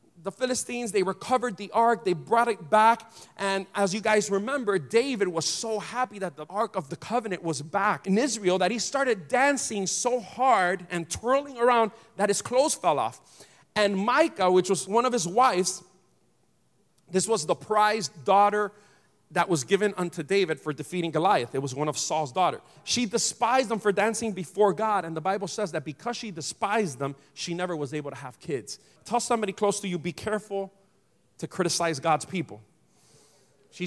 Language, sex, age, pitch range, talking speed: English, male, 40-59, 170-230 Hz, 185 wpm